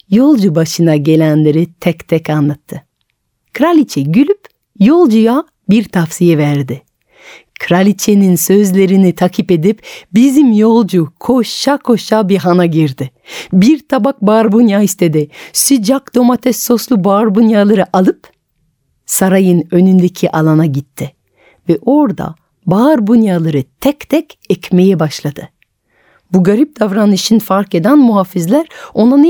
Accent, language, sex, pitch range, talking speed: native, Turkish, female, 165-240 Hz, 105 wpm